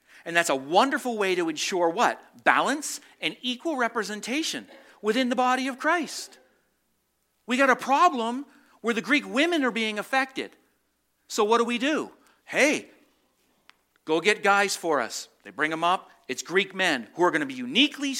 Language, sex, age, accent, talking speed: English, male, 50-69, American, 170 wpm